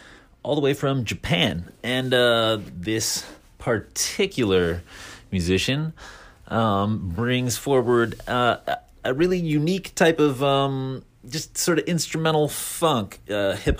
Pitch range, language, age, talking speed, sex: 90-115 Hz, English, 30-49, 115 wpm, male